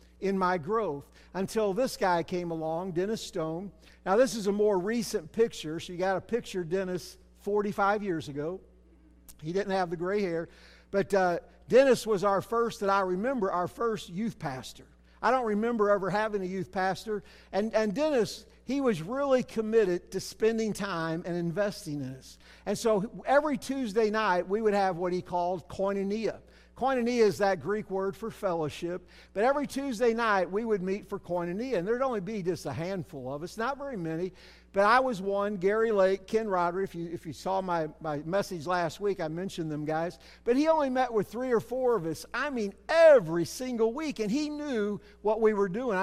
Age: 50-69